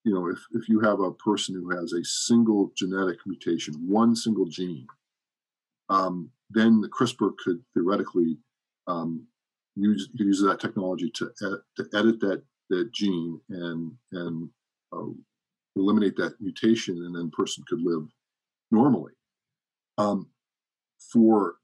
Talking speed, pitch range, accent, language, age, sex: 135 wpm, 95-120 Hz, American, English, 50-69, male